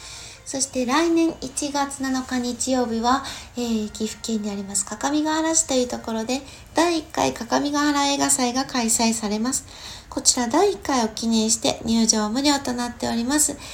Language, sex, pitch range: Japanese, female, 220-270 Hz